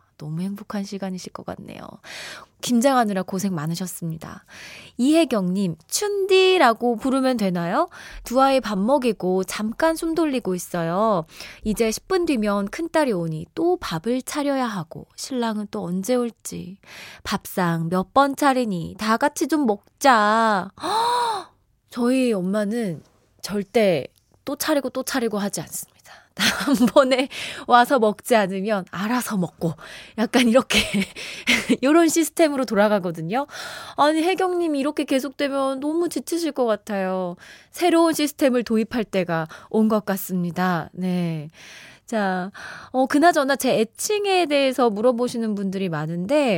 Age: 20-39